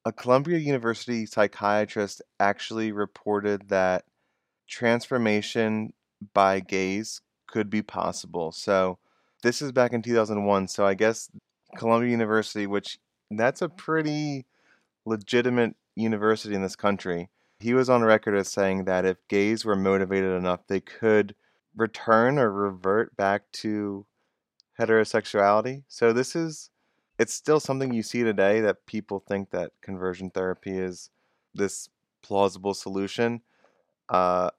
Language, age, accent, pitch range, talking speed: English, 20-39, American, 95-115 Hz, 125 wpm